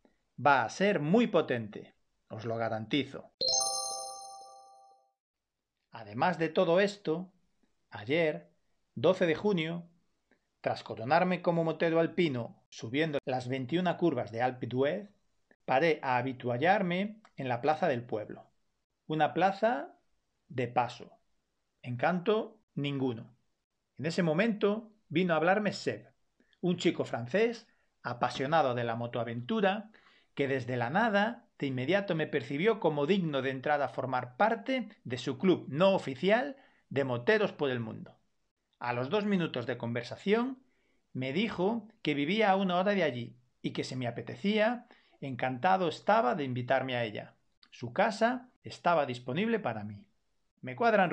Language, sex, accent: Spanish, male, Spanish